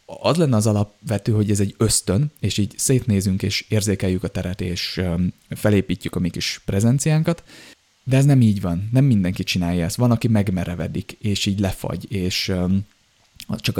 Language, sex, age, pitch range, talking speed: Hungarian, male, 20-39, 95-115 Hz, 165 wpm